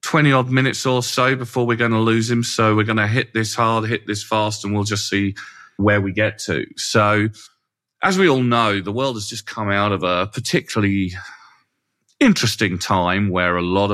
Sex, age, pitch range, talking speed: male, 40-59, 90-110 Hz, 205 wpm